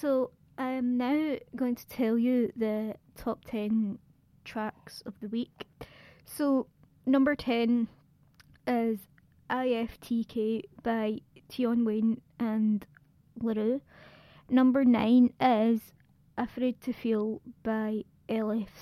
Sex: female